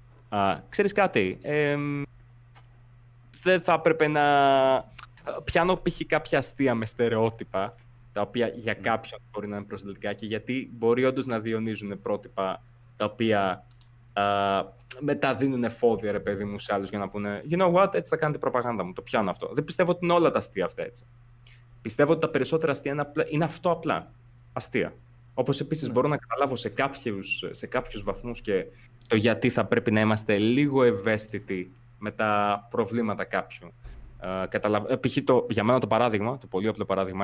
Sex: male